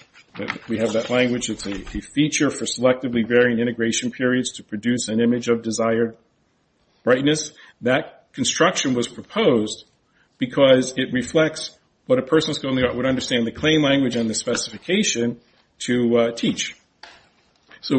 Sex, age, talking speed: male, 50-69, 145 wpm